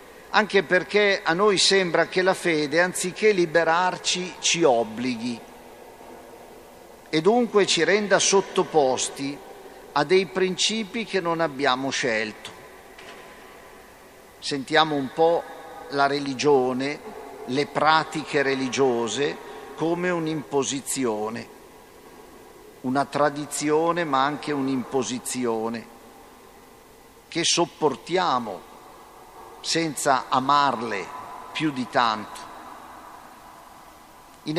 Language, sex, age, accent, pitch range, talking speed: Italian, male, 50-69, native, 140-180 Hz, 80 wpm